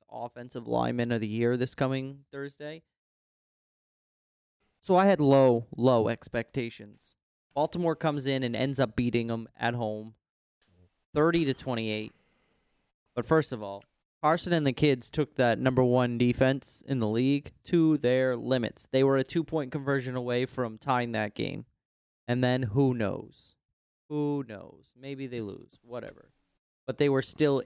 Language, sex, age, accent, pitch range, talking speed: English, male, 20-39, American, 120-140 Hz, 150 wpm